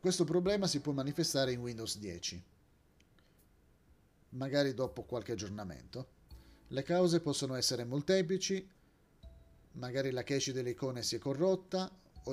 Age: 30-49